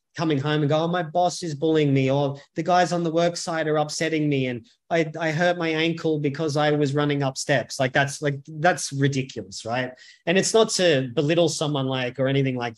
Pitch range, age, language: 140-170 Hz, 20-39, English